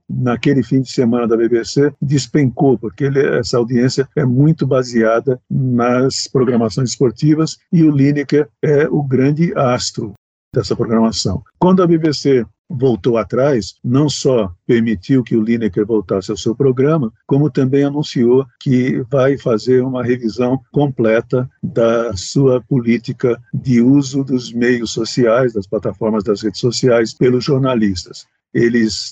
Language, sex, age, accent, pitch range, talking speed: Portuguese, male, 50-69, Brazilian, 120-145 Hz, 135 wpm